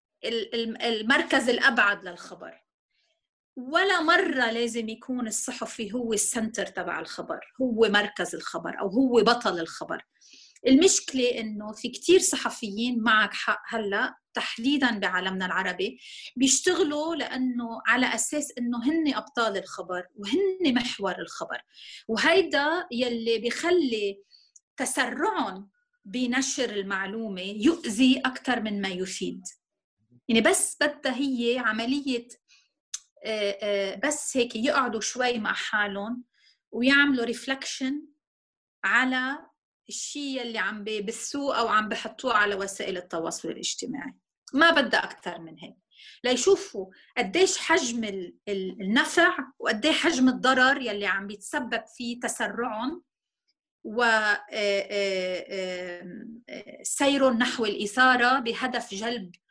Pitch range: 210-275 Hz